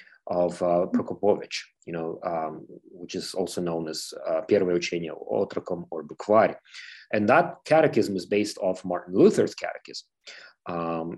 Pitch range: 95-115 Hz